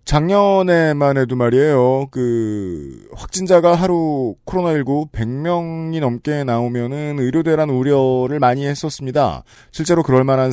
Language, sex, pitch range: Korean, male, 115-160 Hz